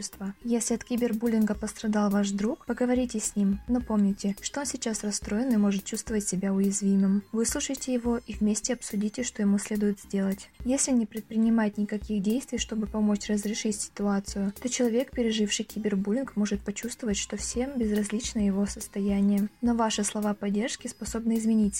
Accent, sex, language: native, female, Russian